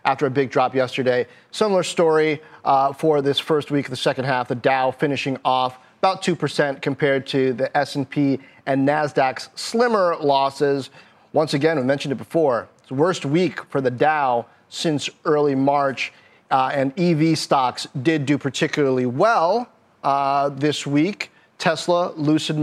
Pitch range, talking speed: 140-175 Hz, 155 wpm